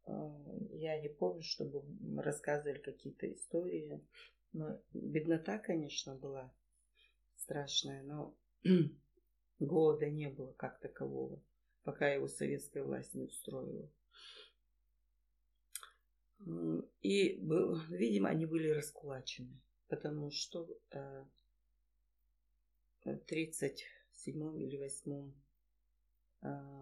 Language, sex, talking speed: Russian, female, 85 wpm